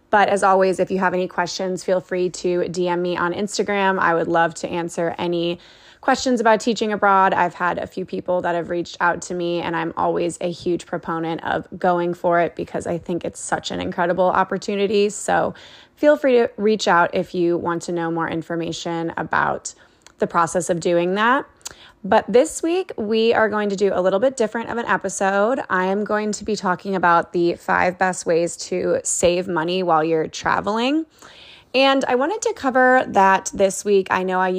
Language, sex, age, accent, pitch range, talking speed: English, female, 20-39, American, 175-205 Hz, 200 wpm